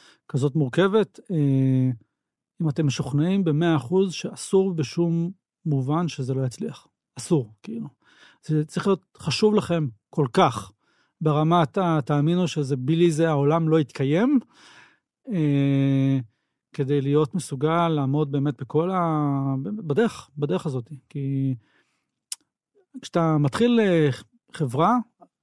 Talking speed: 105 wpm